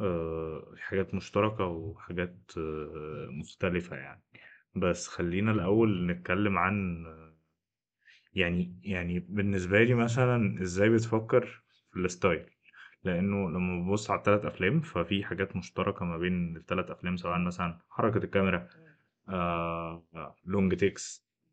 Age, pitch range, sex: 20-39, 90-105 Hz, male